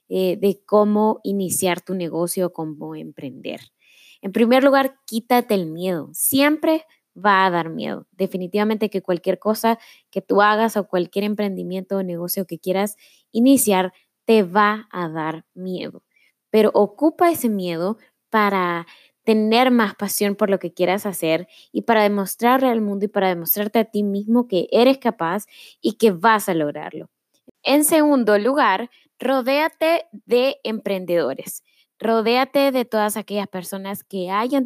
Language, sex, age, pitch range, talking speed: Spanish, female, 20-39, 185-235 Hz, 145 wpm